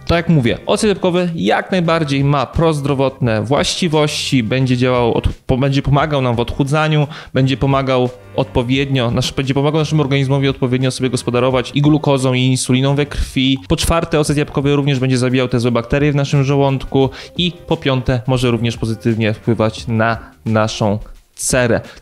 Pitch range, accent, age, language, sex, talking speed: 120-155 Hz, native, 20-39, Polish, male, 160 wpm